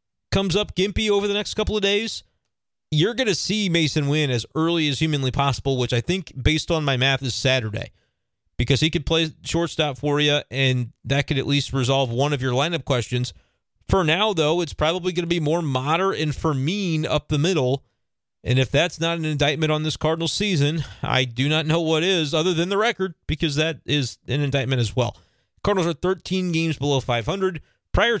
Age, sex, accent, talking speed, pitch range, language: 30-49, male, American, 205 wpm, 135-185 Hz, English